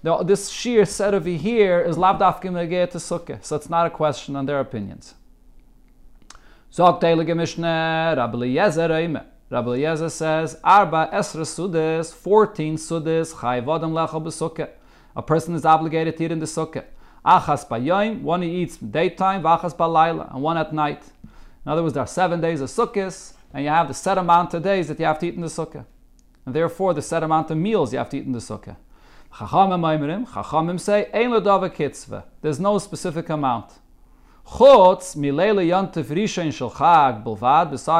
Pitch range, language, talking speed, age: 145-175 Hz, English, 150 wpm, 30-49